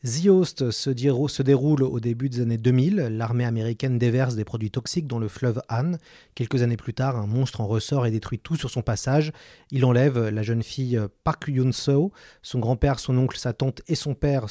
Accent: French